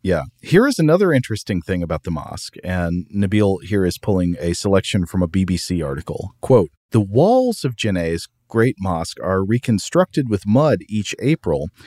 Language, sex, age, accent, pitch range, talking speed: English, male, 40-59, American, 90-120 Hz, 165 wpm